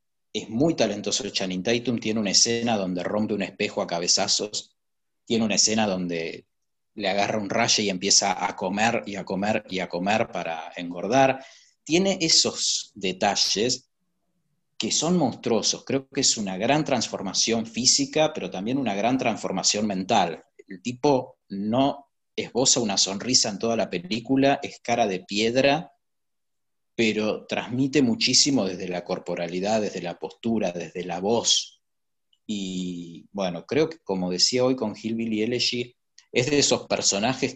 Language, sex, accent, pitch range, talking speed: Spanish, male, Argentinian, 100-135 Hz, 150 wpm